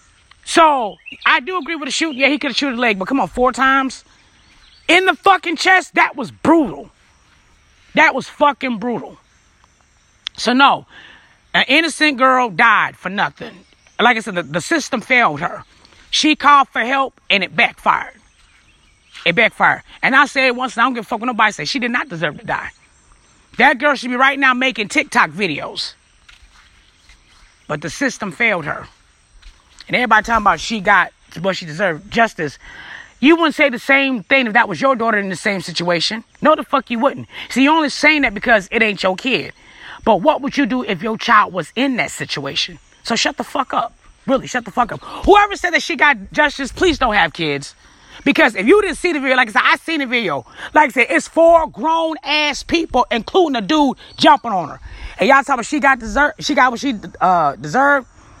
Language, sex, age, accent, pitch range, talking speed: English, female, 30-49, American, 225-295 Hz, 210 wpm